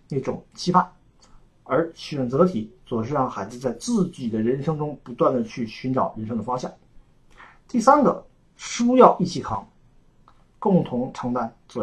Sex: male